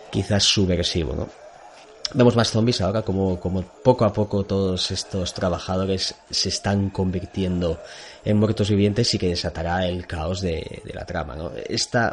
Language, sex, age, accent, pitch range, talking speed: Spanish, male, 20-39, Spanish, 90-105 Hz, 160 wpm